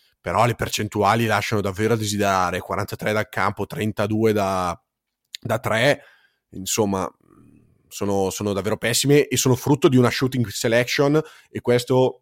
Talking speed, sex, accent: 135 wpm, male, native